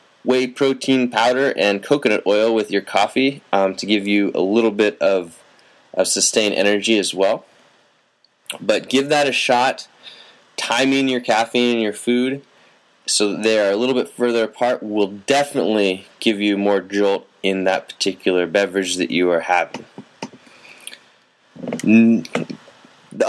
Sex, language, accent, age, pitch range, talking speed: male, English, American, 20-39, 105-130 Hz, 140 wpm